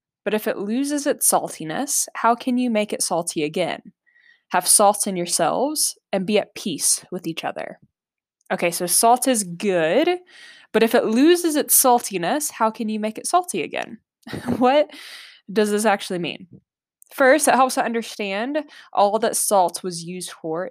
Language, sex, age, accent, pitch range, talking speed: English, female, 10-29, American, 175-245 Hz, 170 wpm